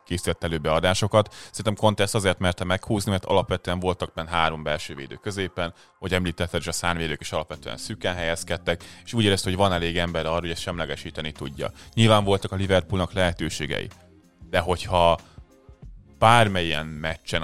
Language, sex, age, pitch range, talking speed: Hungarian, male, 30-49, 80-95 Hz, 160 wpm